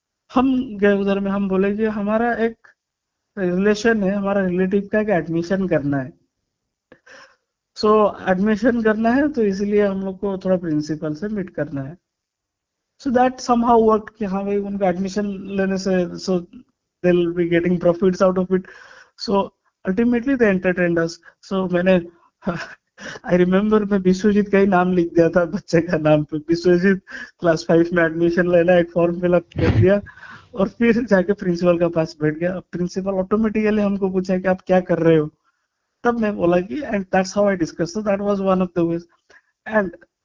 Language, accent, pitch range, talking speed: Hindi, native, 175-215 Hz, 125 wpm